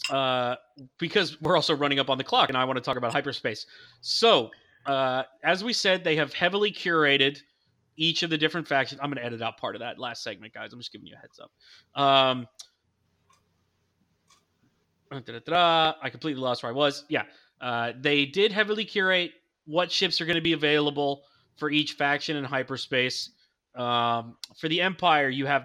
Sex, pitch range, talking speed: male, 130-165 Hz, 185 wpm